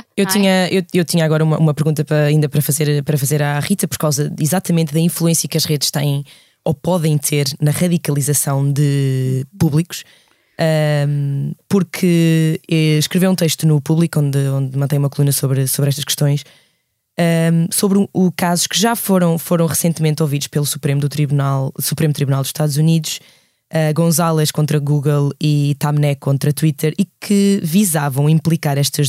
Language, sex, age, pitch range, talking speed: Portuguese, female, 20-39, 145-180 Hz, 165 wpm